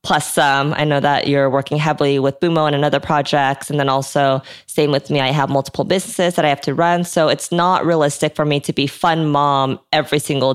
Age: 20-39